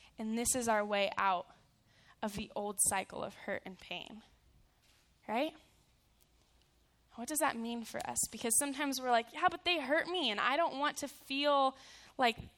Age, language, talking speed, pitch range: 10-29, English, 175 wpm, 225-295 Hz